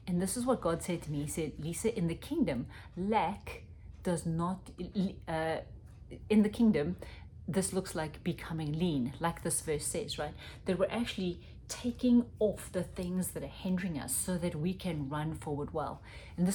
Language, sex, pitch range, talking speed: English, female, 155-200 Hz, 185 wpm